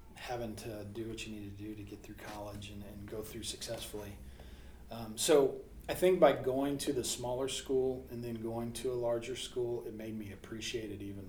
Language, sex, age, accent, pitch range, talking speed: English, male, 40-59, American, 110-135 Hz, 215 wpm